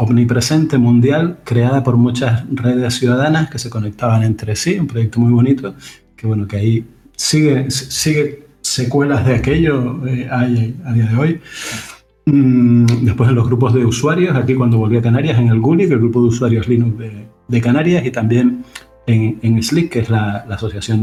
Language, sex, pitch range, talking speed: Spanish, male, 115-130 Hz, 190 wpm